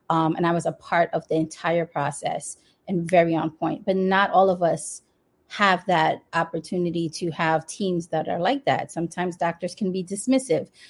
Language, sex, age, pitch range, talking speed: English, female, 30-49, 170-195 Hz, 185 wpm